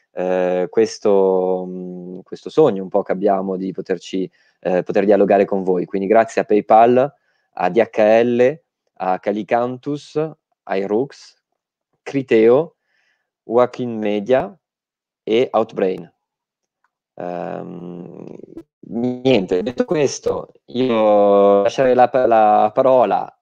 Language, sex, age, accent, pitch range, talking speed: Italian, male, 20-39, native, 100-135 Hz, 100 wpm